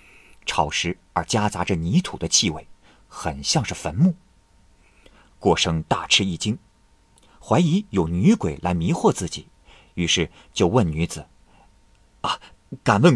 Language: Chinese